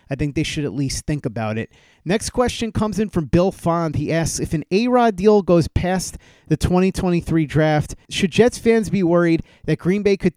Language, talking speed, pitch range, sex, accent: English, 210 wpm, 140-175 Hz, male, American